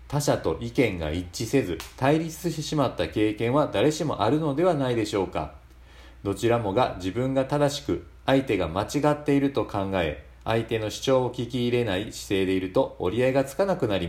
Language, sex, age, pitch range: Japanese, male, 40-59, 90-130 Hz